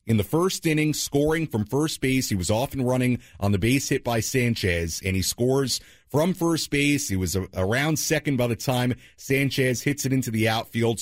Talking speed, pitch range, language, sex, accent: 205 wpm, 105-160 Hz, English, male, American